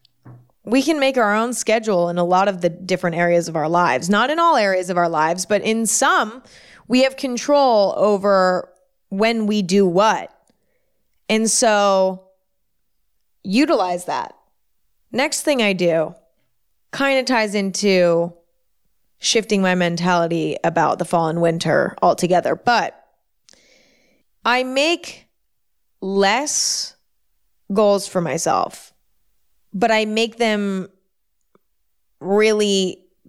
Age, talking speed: 20-39, 120 wpm